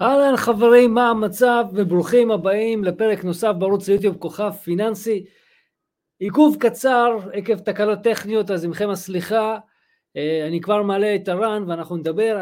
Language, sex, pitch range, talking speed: Hebrew, male, 165-220 Hz, 130 wpm